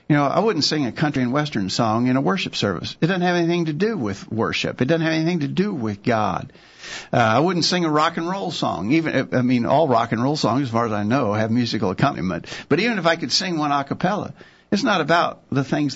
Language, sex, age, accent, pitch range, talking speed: English, male, 60-79, American, 110-145 Hz, 260 wpm